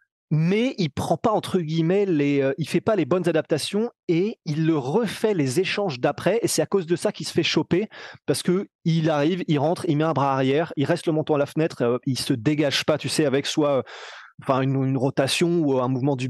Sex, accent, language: male, French, French